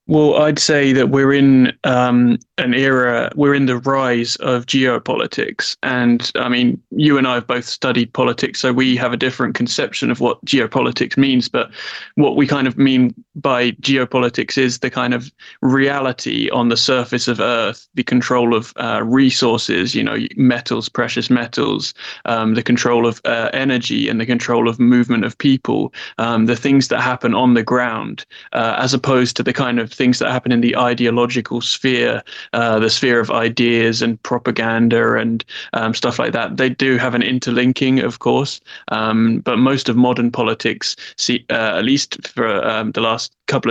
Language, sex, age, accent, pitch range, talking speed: English, male, 20-39, British, 115-130 Hz, 180 wpm